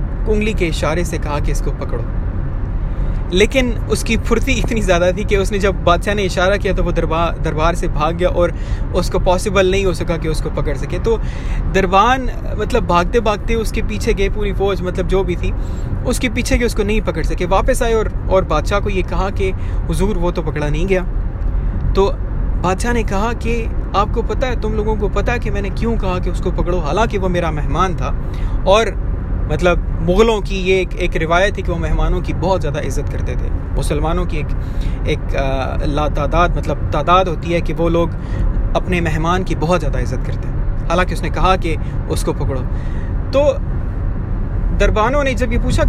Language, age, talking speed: Hindi, 20-39, 190 wpm